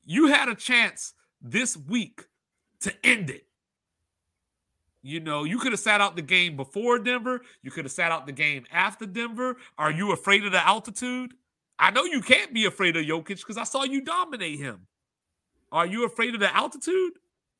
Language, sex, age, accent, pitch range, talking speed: English, male, 30-49, American, 140-195 Hz, 190 wpm